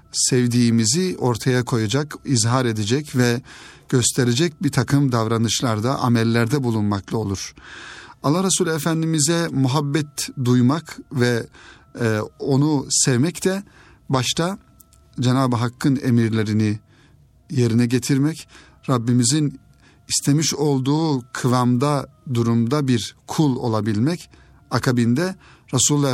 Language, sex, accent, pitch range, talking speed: Turkish, male, native, 120-145 Hz, 90 wpm